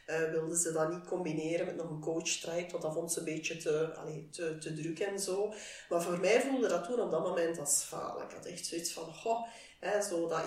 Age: 40-59